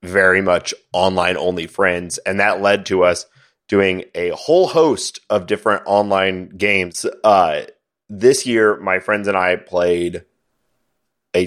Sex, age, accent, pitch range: male, 30-49, American, 90-110 Hz